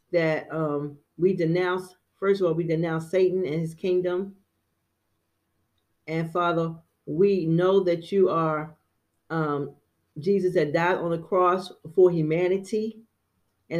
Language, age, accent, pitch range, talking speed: English, 40-59, American, 145-185 Hz, 130 wpm